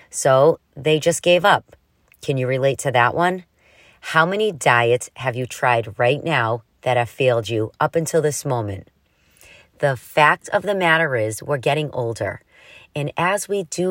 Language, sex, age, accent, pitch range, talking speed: English, female, 40-59, American, 125-165 Hz, 175 wpm